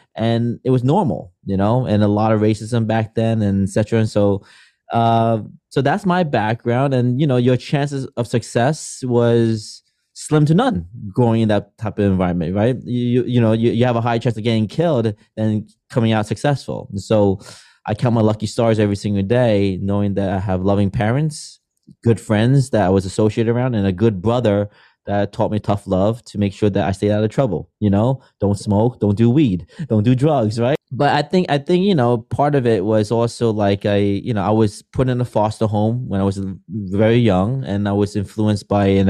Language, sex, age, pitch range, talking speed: English, male, 20-39, 100-125 Hz, 215 wpm